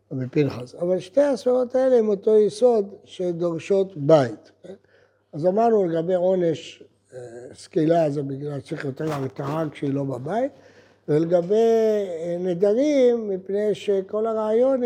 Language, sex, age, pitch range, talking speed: Hebrew, male, 60-79, 155-210 Hz, 115 wpm